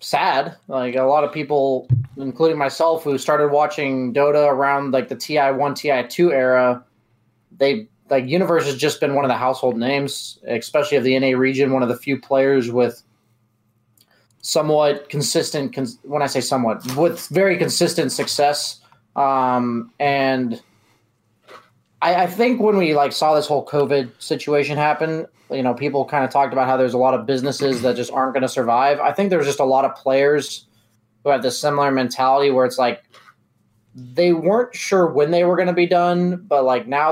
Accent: American